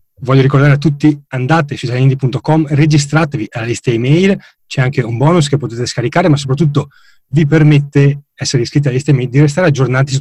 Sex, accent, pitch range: male, native, 125-150 Hz